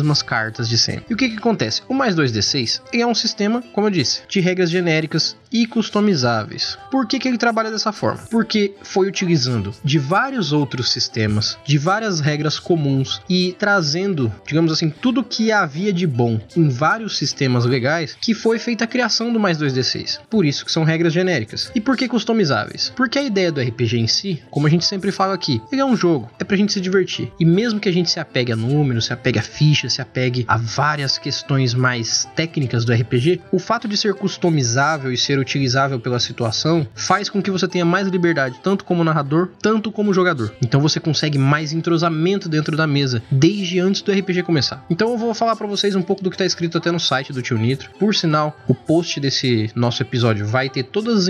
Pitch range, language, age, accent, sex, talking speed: 130-195 Hz, Portuguese, 20-39, Brazilian, male, 210 wpm